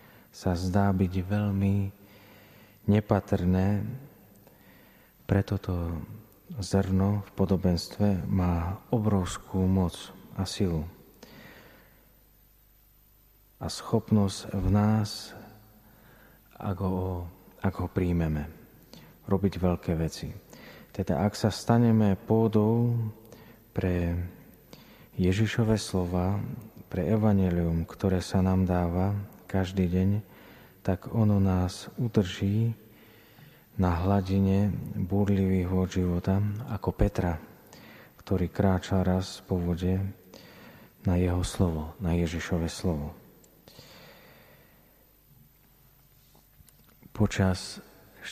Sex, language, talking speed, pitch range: male, Slovak, 80 wpm, 90-105 Hz